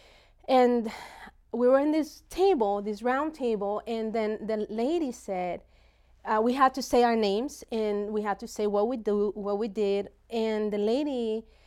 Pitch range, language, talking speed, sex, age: 200-235 Hz, English, 180 wpm, female, 30-49